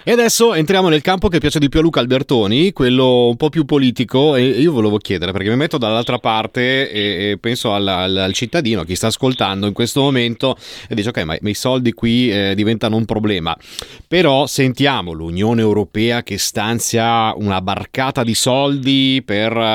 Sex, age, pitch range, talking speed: male, 30-49, 105-140 Hz, 180 wpm